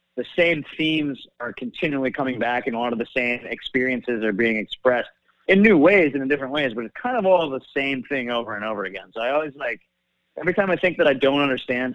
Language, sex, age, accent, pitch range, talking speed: English, male, 30-49, American, 110-135 Hz, 240 wpm